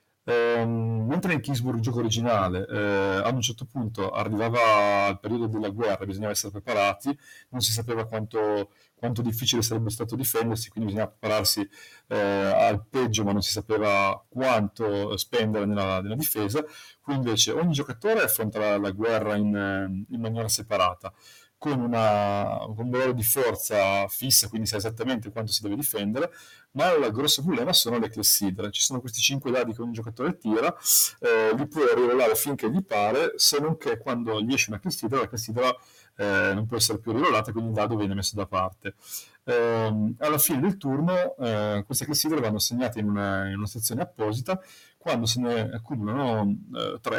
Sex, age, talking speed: male, 30-49, 175 wpm